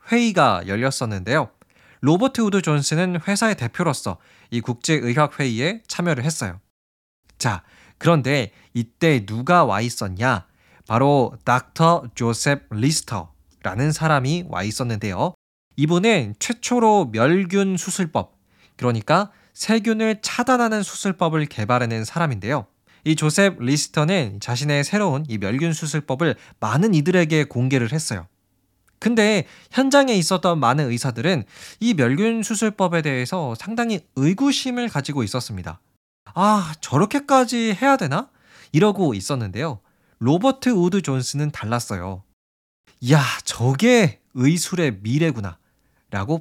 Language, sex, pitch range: Korean, male, 120-185 Hz